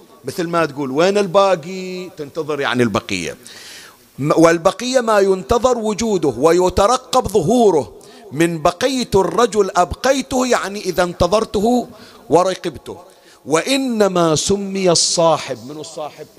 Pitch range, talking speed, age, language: 140-205 Hz, 100 wpm, 50-69, Arabic